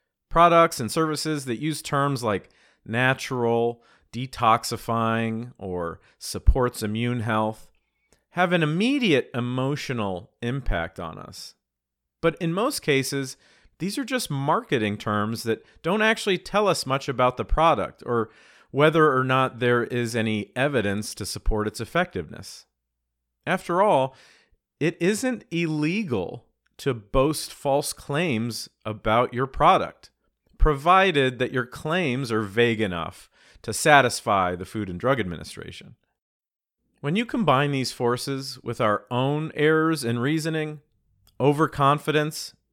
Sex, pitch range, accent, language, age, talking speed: male, 110-150 Hz, American, English, 40-59, 125 wpm